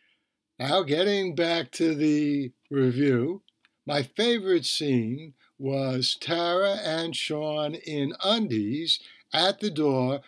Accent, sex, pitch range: American, male, 130-180 Hz